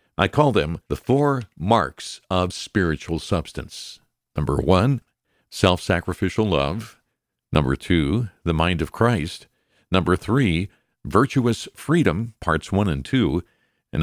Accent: American